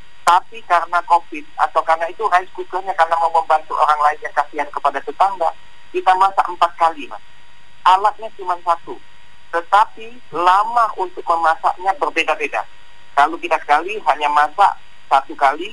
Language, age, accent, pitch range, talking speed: Indonesian, 40-59, native, 145-185 Hz, 140 wpm